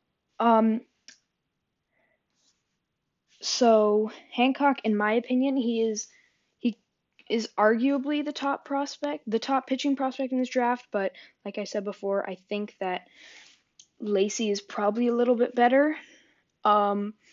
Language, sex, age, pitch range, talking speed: English, female, 10-29, 200-250 Hz, 130 wpm